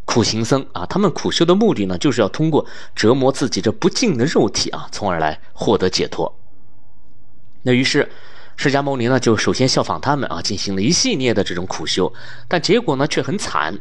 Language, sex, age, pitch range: Chinese, male, 20-39, 100-145 Hz